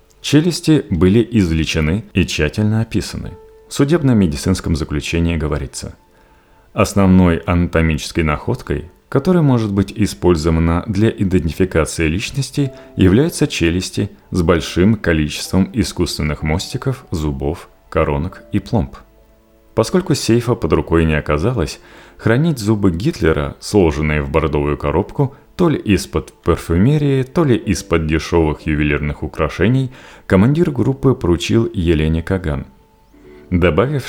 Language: Russian